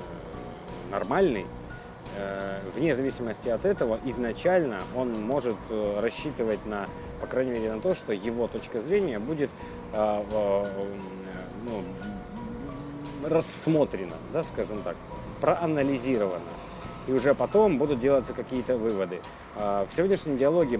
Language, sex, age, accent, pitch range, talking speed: Russian, male, 30-49, native, 105-130 Hz, 105 wpm